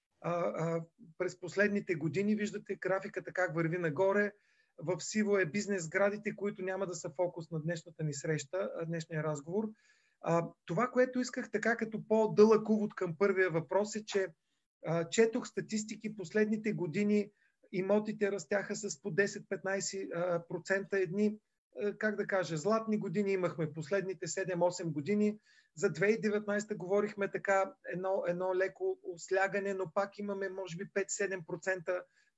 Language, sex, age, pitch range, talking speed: Bulgarian, male, 40-59, 180-210 Hz, 130 wpm